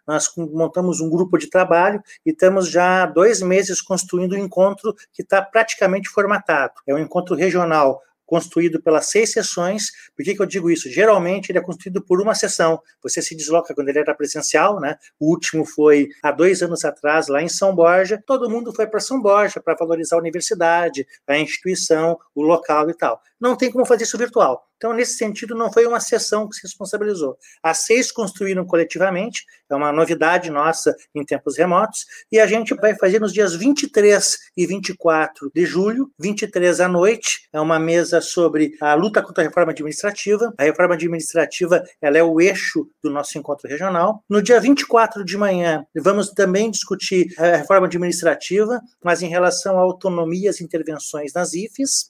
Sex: male